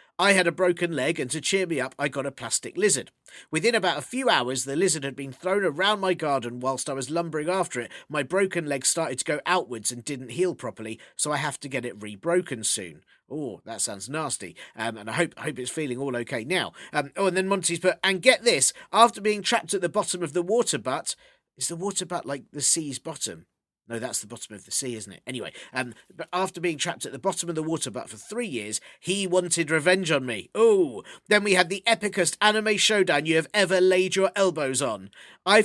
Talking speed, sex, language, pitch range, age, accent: 235 wpm, male, English, 135-190 Hz, 40-59, British